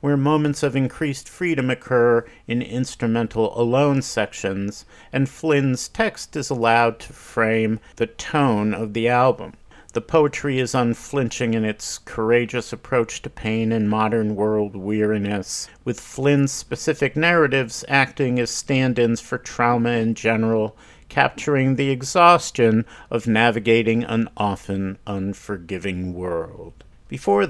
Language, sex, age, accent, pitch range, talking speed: English, male, 50-69, American, 110-135 Hz, 125 wpm